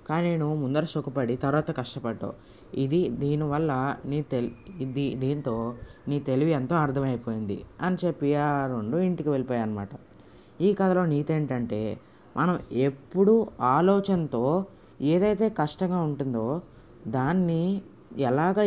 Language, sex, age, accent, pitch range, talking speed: Telugu, female, 20-39, native, 130-185 Hz, 110 wpm